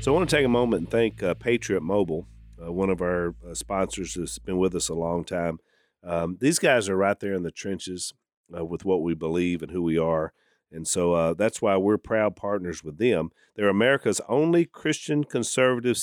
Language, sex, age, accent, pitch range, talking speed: English, male, 40-59, American, 85-110 Hz, 215 wpm